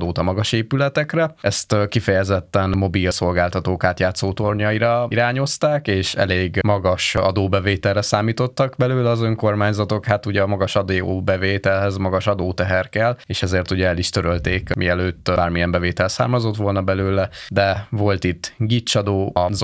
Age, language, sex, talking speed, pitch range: 20-39, Hungarian, male, 135 wpm, 90-105 Hz